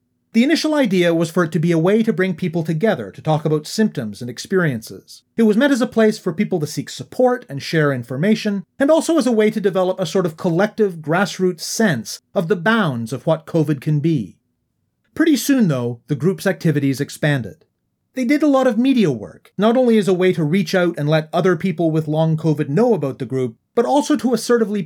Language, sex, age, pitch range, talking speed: English, male, 30-49, 140-210 Hz, 220 wpm